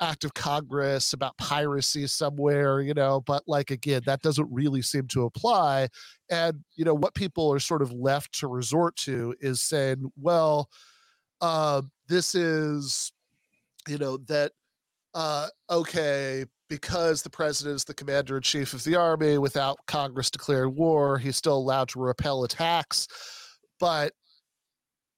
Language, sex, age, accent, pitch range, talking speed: English, male, 40-59, American, 135-160 Hz, 150 wpm